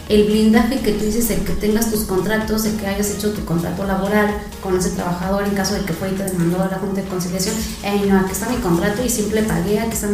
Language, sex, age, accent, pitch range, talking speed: Spanish, female, 30-49, Mexican, 195-225 Hz, 260 wpm